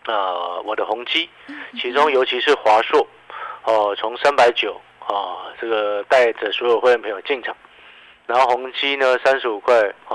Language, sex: Chinese, male